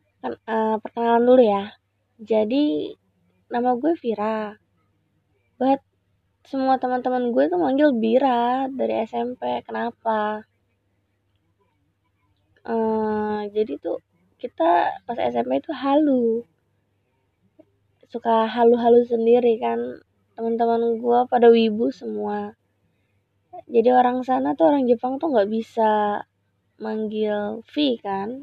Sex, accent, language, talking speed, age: female, native, Indonesian, 105 wpm, 20-39